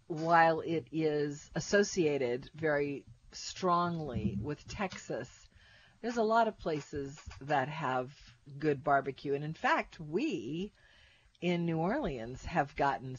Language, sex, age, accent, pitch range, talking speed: English, female, 50-69, American, 130-180 Hz, 120 wpm